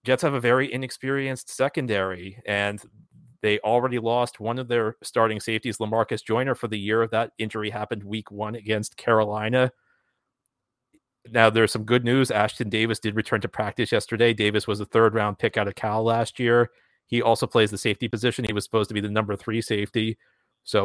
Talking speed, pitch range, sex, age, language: 190 wpm, 110-125 Hz, male, 30-49, English